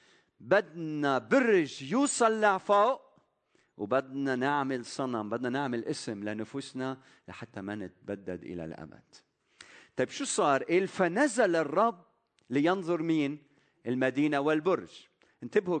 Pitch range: 115-180 Hz